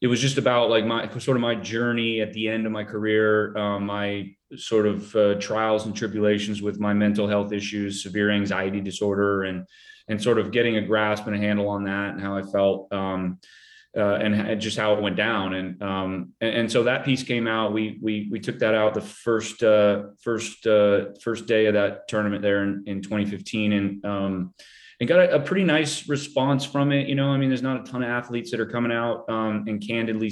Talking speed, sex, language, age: 225 wpm, male, English, 30-49